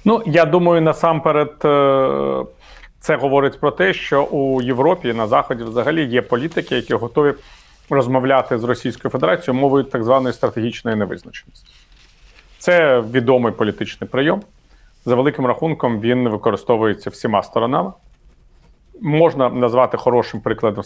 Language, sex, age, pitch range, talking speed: Ukrainian, male, 40-59, 110-140 Hz, 120 wpm